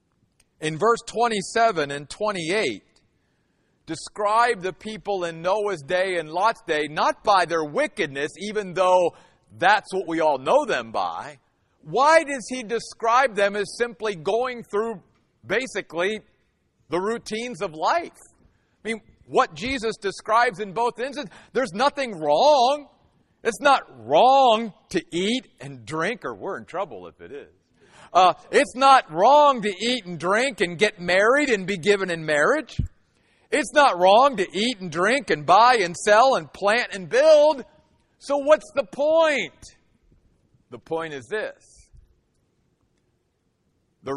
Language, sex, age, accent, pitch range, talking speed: English, male, 50-69, American, 155-235 Hz, 145 wpm